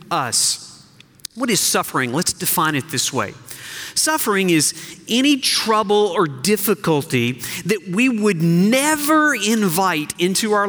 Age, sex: 40-59, male